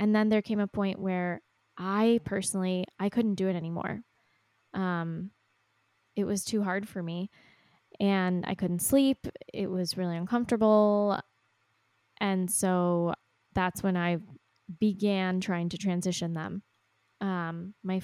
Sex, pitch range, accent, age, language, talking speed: female, 175-200 Hz, American, 20-39, English, 135 wpm